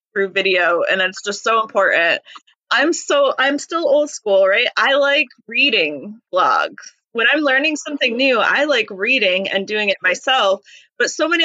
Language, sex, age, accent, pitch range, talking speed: English, female, 20-39, American, 200-270 Hz, 175 wpm